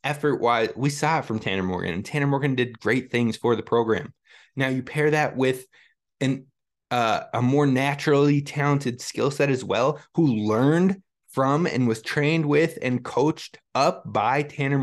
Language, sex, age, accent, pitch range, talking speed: English, male, 20-39, American, 115-145 Hz, 170 wpm